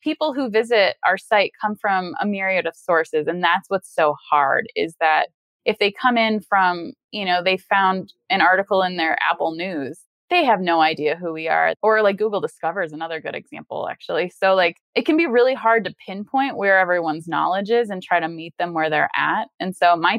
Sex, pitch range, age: female, 165-215 Hz, 20-39